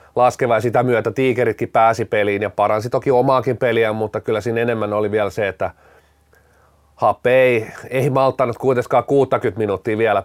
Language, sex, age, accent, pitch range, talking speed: Finnish, male, 30-49, native, 105-125 Hz, 160 wpm